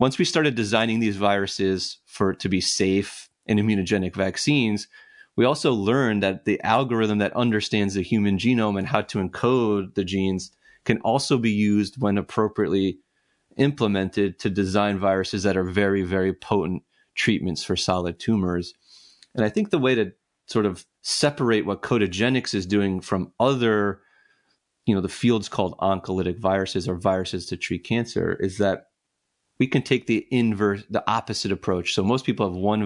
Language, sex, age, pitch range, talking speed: English, male, 30-49, 95-115 Hz, 165 wpm